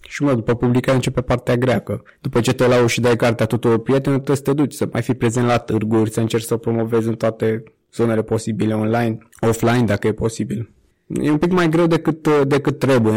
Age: 20-39